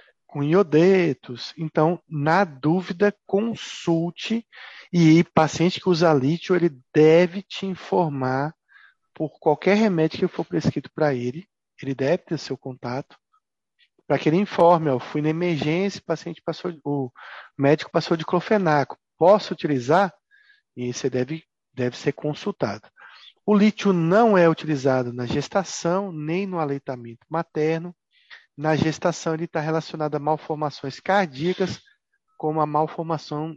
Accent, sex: Brazilian, male